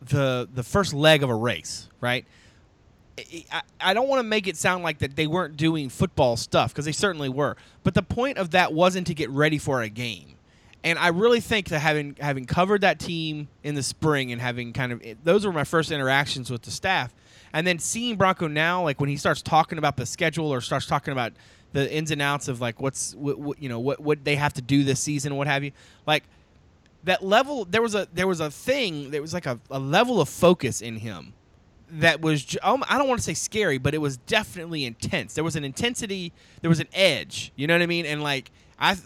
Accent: American